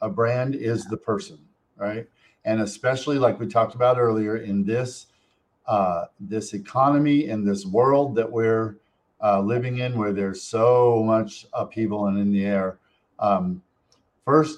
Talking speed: 150 wpm